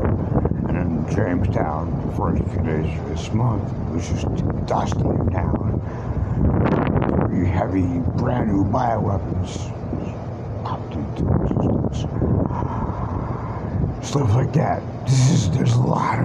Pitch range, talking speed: 95-120 Hz, 100 wpm